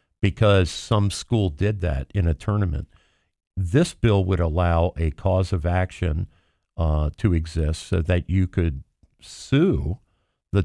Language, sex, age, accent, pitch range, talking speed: English, male, 50-69, American, 80-100 Hz, 140 wpm